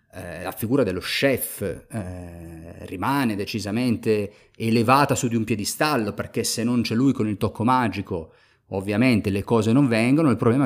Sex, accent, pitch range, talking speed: male, native, 105-130 Hz, 160 wpm